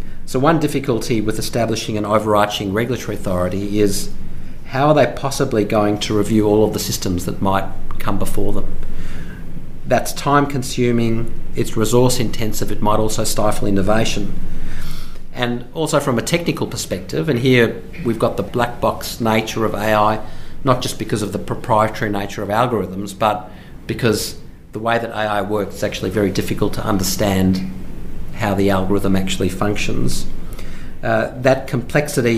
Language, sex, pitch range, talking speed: English, male, 100-120 Hz, 150 wpm